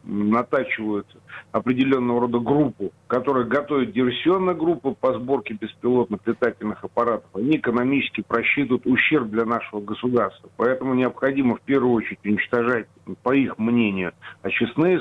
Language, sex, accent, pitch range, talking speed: Russian, male, native, 115-140 Hz, 120 wpm